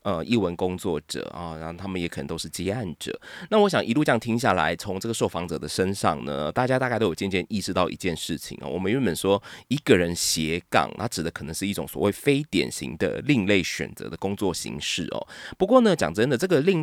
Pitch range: 85-115 Hz